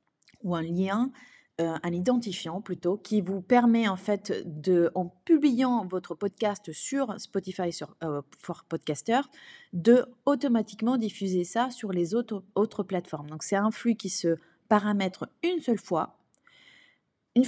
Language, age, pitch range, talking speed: French, 30-49, 170-220 Hz, 150 wpm